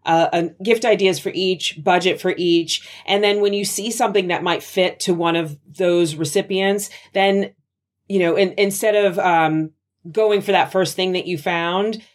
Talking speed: 190 wpm